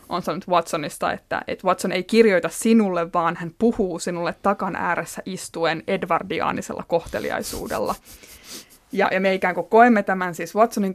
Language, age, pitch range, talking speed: Finnish, 20-39, 175-200 Hz, 150 wpm